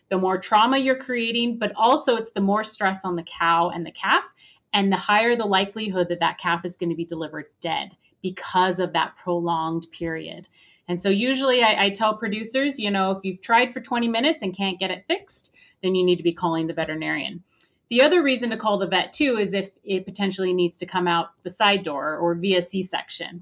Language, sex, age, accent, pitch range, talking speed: English, female, 30-49, American, 185-235 Hz, 220 wpm